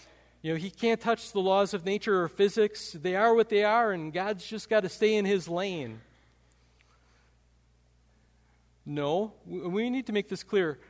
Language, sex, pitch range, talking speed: English, male, 130-195 Hz, 175 wpm